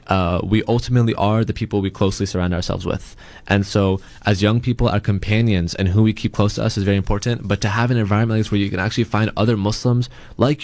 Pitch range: 100-120 Hz